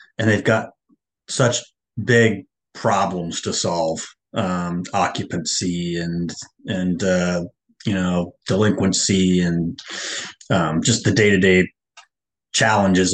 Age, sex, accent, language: 30-49, male, American, English